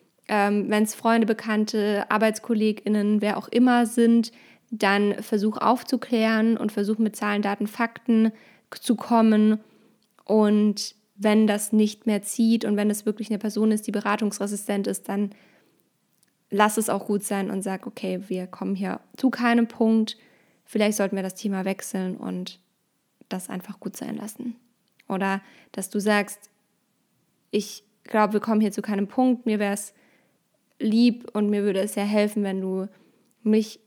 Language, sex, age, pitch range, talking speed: German, female, 20-39, 205-230 Hz, 155 wpm